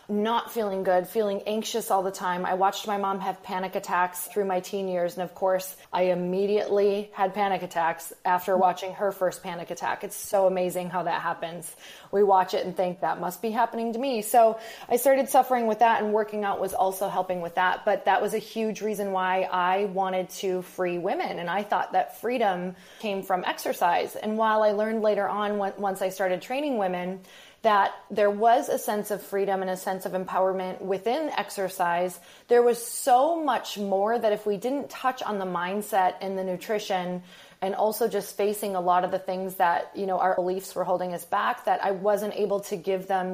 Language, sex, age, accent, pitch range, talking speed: English, female, 20-39, American, 185-215 Hz, 210 wpm